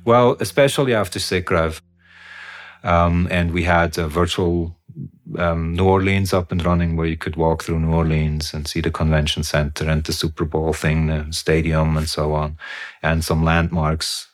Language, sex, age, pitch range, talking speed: English, male, 40-59, 85-105 Hz, 170 wpm